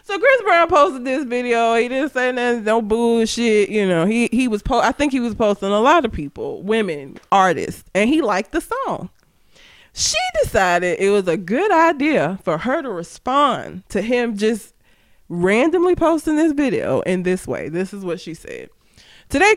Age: 20-39